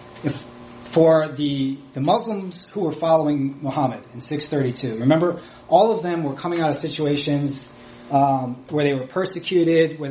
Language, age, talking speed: English, 30-49, 150 wpm